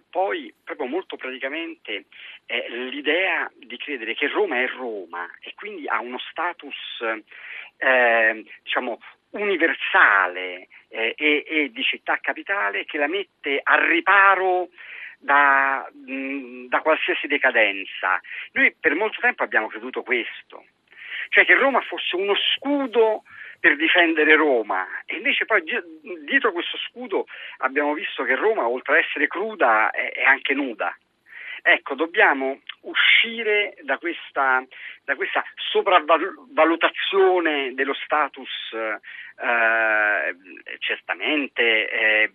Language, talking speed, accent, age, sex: Italian, 115 wpm, native, 40-59, male